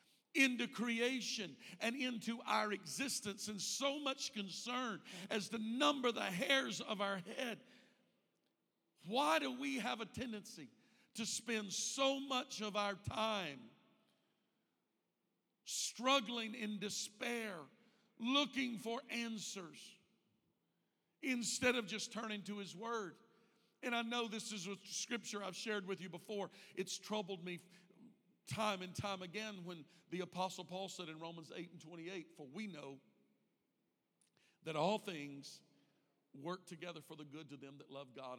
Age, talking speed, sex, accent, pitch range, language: 50-69, 140 wpm, male, American, 145-220 Hz, English